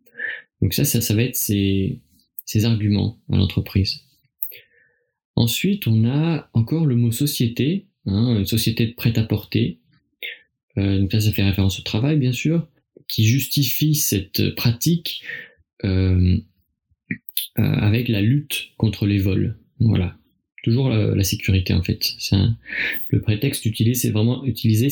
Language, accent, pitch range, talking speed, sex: French, French, 100-125 Hz, 145 wpm, male